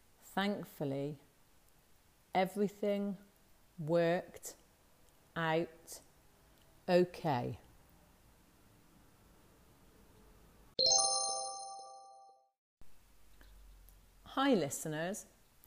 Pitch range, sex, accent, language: 140-185 Hz, female, British, English